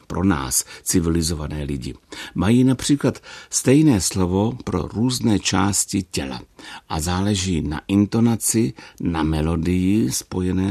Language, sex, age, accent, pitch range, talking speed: Czech, male, 60-79, native, 80-105 Hz, 105 wpm